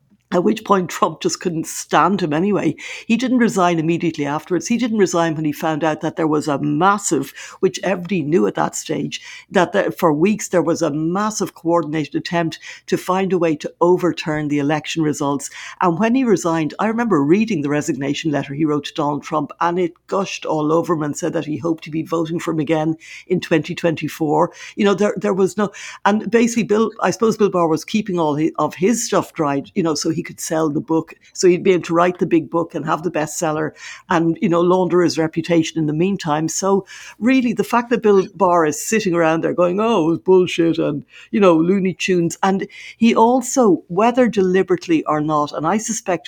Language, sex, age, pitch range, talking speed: English, female, 60-79, 160-195 Hz, 215 wpm